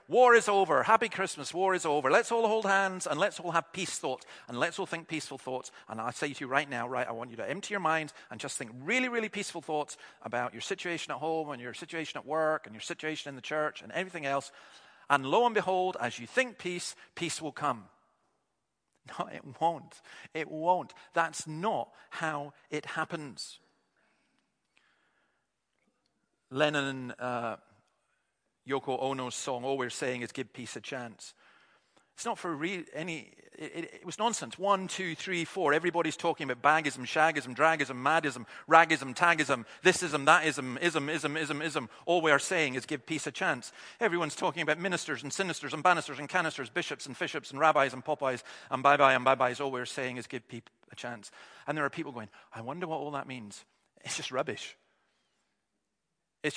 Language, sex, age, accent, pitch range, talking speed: English, male, 40-59, British, 135-170 Hz, 195 wpm